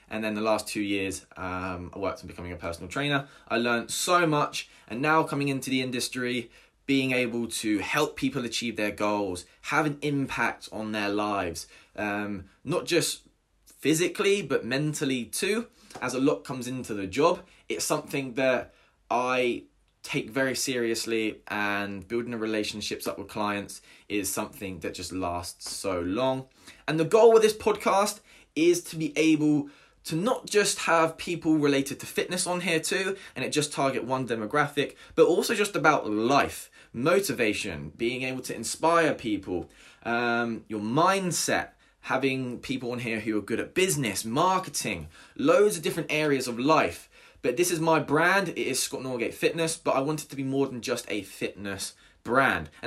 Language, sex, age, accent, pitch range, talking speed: English, male, 20-39, British, 110-160 Hz, 175 wpm